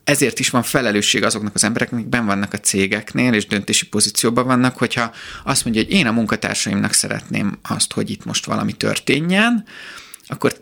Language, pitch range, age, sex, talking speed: Hungarian, 105-135 Hz, 30-49, male, 170 wpm